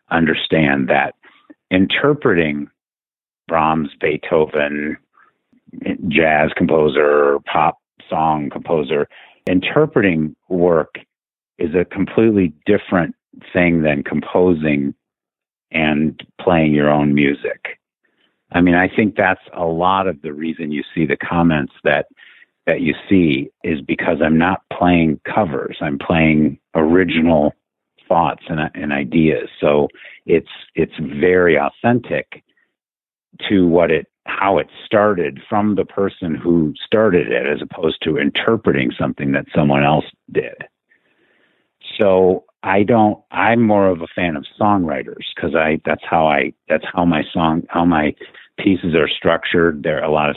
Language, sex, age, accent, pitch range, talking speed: English, male, 50-69, American, 75-90 Hz, 130 wpm